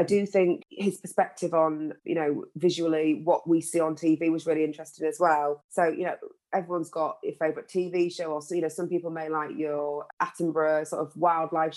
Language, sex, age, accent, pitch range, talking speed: English, female, 20-39, British, 155-175 Hz, 205 wpm